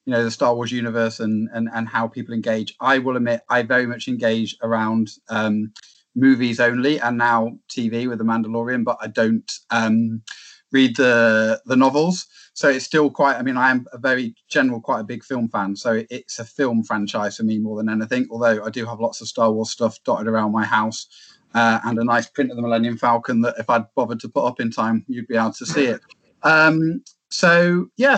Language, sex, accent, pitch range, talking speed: English, male, British, 115-135 Hz, 220 wpm